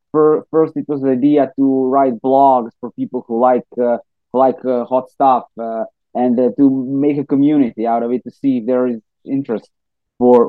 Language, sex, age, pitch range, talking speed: English, male, 20-39, 120-145 Hz, 195 wpm